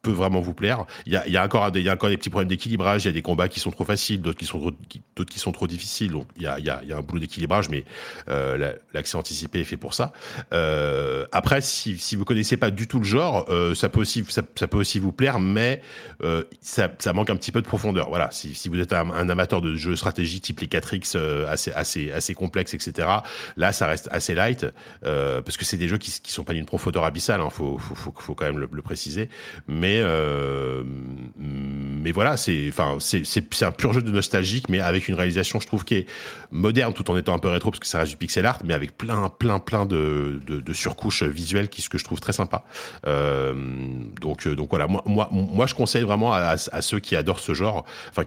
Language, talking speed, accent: French, 260 wpm, French